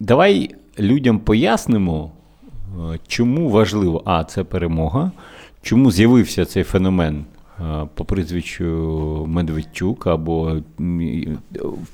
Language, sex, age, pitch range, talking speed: Ukrainian, male, 30-49, 85-115 Hz, 85 wpm